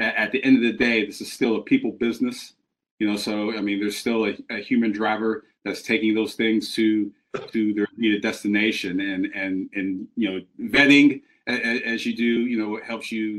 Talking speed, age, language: 220 wpm, 40-59, English